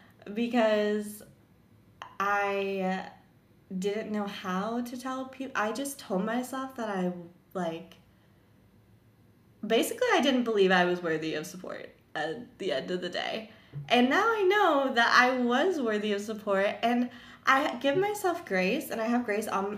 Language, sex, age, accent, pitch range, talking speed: English, female, 20-39, American, 185-225 Hz, 150 wpm